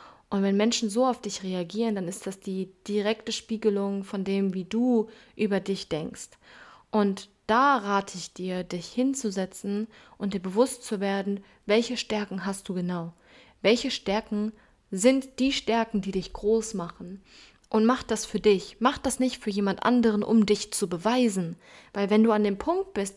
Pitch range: 195-240 Hz